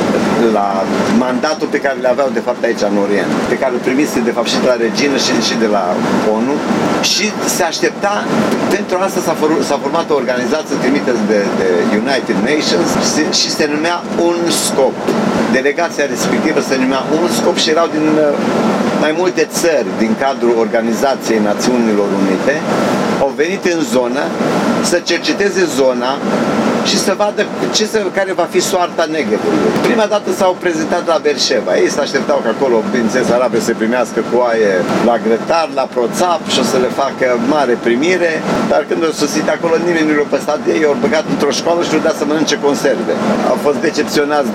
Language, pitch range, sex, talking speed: Romanian, 125-195 Hz, male, 175 wpm